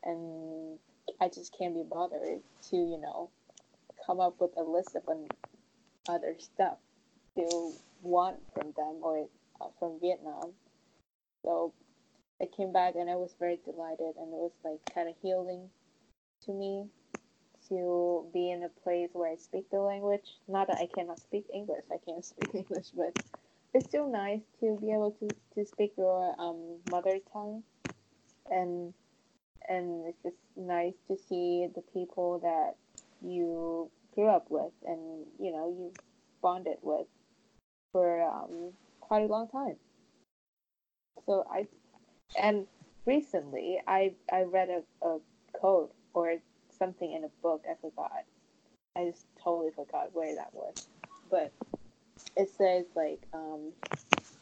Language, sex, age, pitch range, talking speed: Vietnamese, female, 20-39, 170-195 Hz, 145 wpm